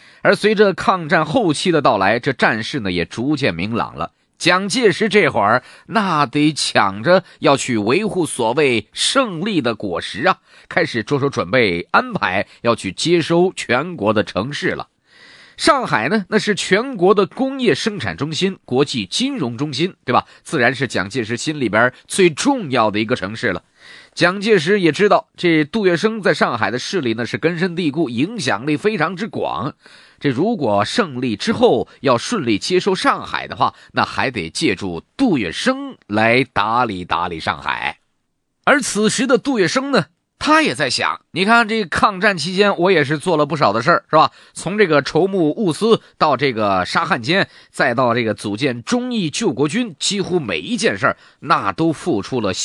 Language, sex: Chinese, male